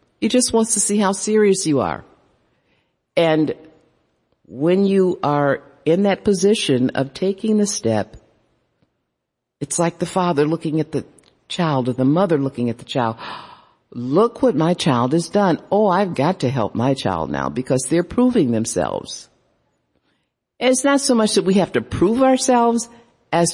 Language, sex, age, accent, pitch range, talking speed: English, female, 50-69, American, 125-195 Hz, 165 wpm